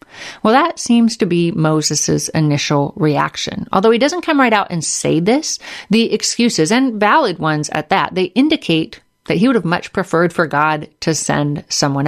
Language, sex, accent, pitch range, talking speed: English, female, American, 155-215 Hz, 185 wpm